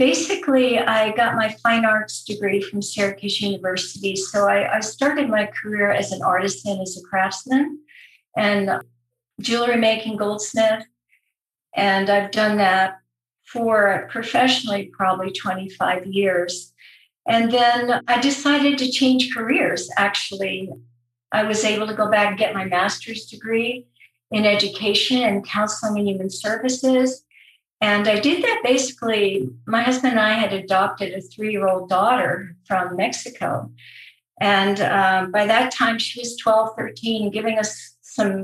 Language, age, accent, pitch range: English, 50-69, American, 195-235 Hz